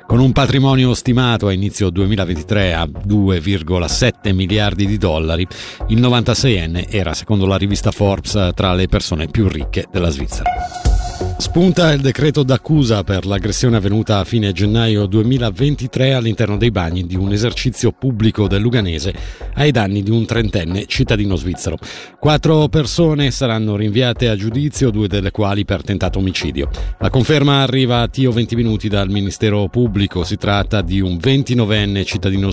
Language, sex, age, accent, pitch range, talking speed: Italian, male, 50-69, native, 95-125 Hz, 150 wpm